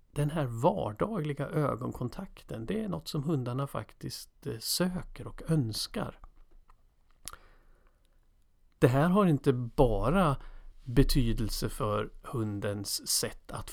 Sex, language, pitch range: male, Swedish, 115-150 Hz